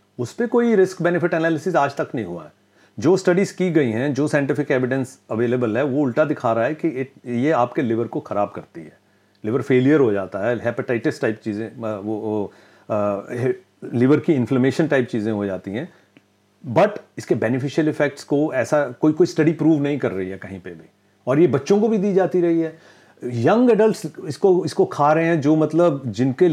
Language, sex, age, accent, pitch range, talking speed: Hindi, male, 40-59, native, 120-170 Hz, 205 wpm